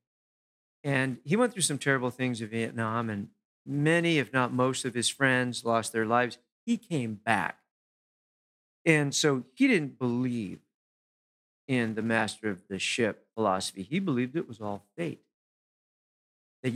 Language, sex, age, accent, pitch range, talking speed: English, male, 50-69, American, 115-150 Hz, 150 wpm